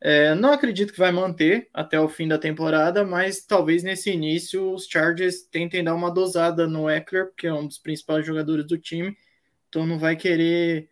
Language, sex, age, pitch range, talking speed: Portuguese, male, 20-39, 155-190 Hz, 185 wpm